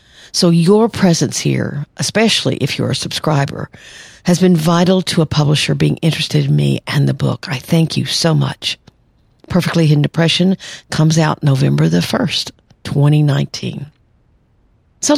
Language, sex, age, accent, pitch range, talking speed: English, female, 50-69, American, 140-180 Hz, 145 wpm